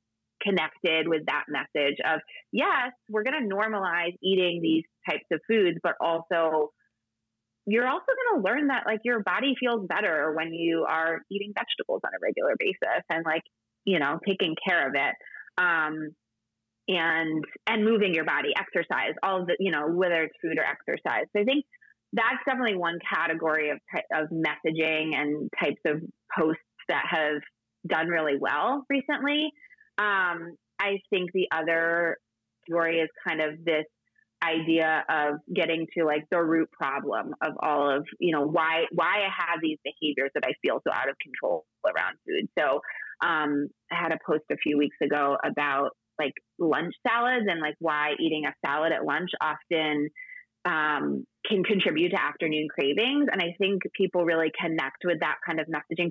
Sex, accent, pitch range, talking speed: female, American, 155-200 Hz, 170 wpm